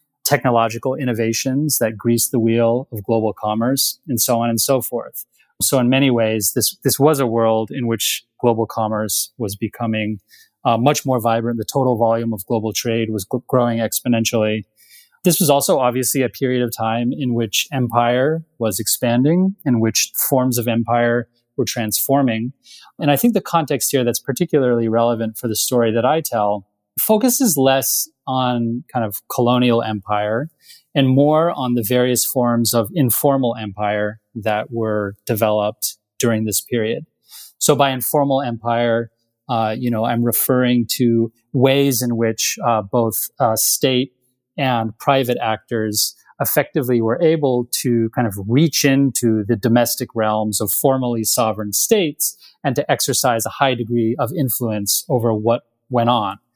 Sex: male